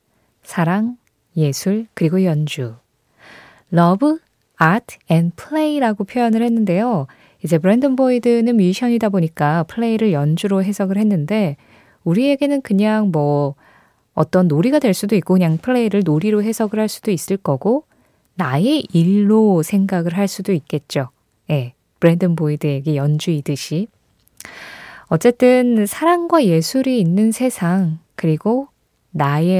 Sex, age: female, 20-39